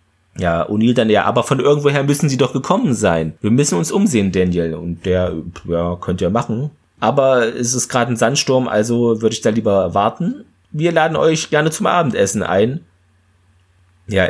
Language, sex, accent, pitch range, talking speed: German, male, German, 100-130 Hz, 180 wpm